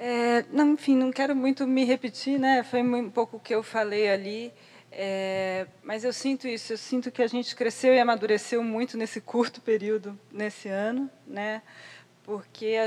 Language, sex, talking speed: Portuguese, female, 180 wpm